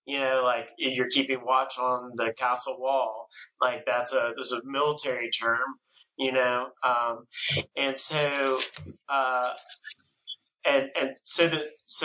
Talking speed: 130 wpm